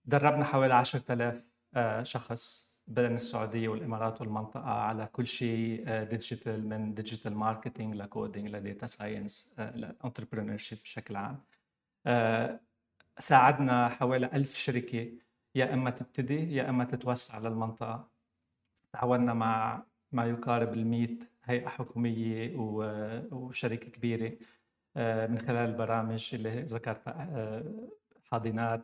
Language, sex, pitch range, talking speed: Arabic, male, 115-135 Hz, 100 wpm